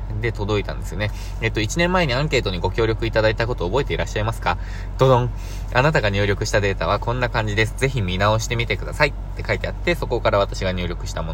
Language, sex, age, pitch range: Japanese, male, 20-39, 95-120 Hz